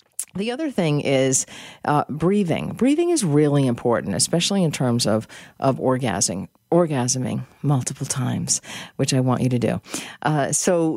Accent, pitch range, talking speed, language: American, 130-195 Hz, 150 wpm, English